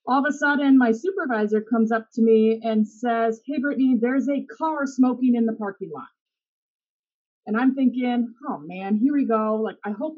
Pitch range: 230-285 Hz